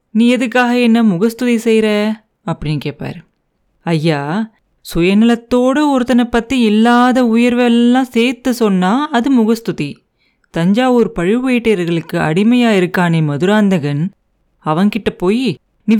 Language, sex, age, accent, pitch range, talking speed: Tamil, female, 30-49, native, 175-240 Hz, 95 wpm